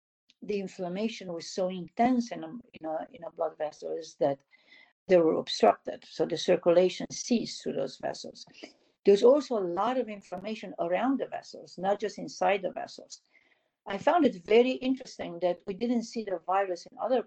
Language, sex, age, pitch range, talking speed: English, female, 60-79, 165-220 Hz, 175 wpm